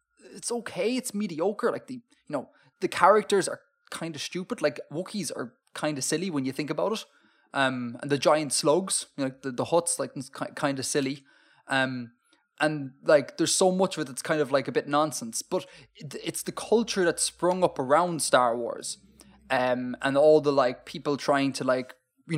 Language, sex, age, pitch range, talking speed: English, male, 20-39, 140-200 Hz, 200 wpm